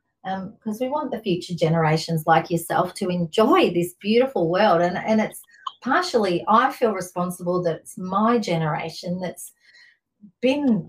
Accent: Australian